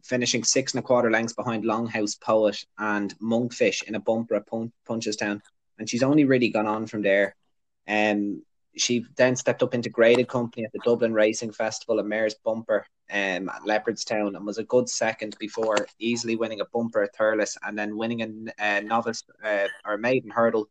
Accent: Irish